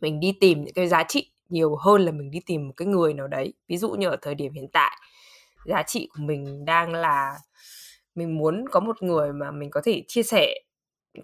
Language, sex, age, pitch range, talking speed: Vietnamese, female, 20-39, 160-225 Hz, 235 wpm